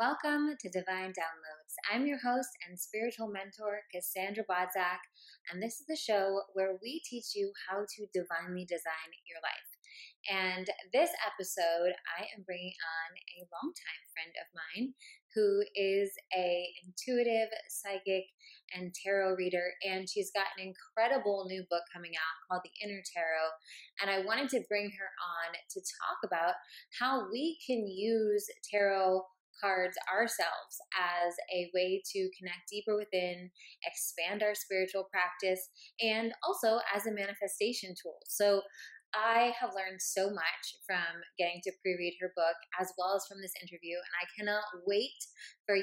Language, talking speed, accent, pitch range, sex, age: English, 155 wpm, American, 180-225 Hz, female, 20-39